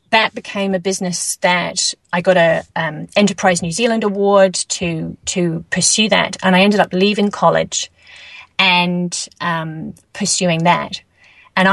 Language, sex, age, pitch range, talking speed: English, female, 30-49, 175-205 Hz, 140 wpm